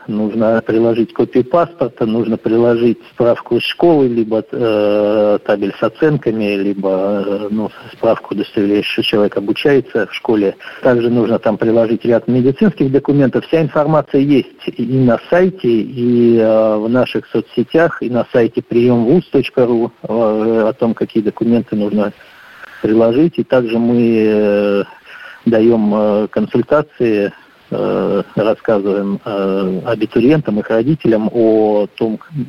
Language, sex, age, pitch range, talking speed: Russian, male, 50-69, 110-130 Hz, 120 wpm